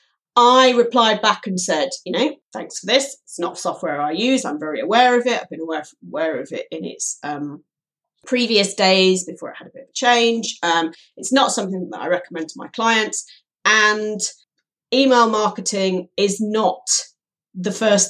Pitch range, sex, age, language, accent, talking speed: 175-235 Hz, female, 40-59, English, British, 190 wpm